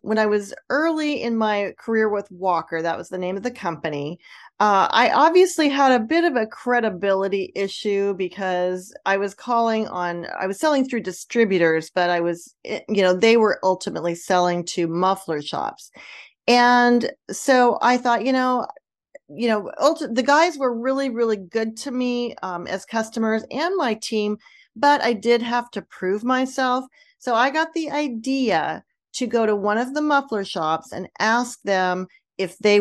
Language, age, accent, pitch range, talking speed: English, 40-59, American, 190-255 Hz, 175 wpm